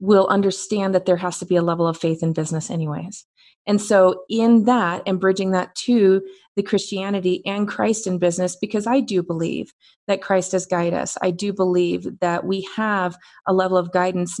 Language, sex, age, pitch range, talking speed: English, female, 30-49, 180-220 Hz, 195 wpm